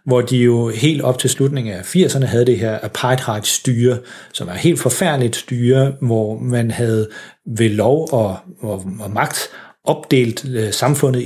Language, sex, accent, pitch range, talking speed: Danish, male, native, 115-140 Hz, 155 wpm